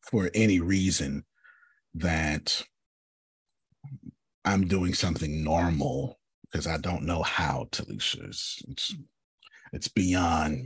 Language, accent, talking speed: English, American, 95 wpm